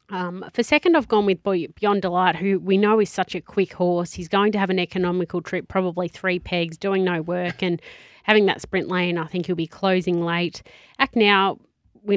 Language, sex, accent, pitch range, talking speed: English, female, Australian, 175-195 Hz, 210 wpm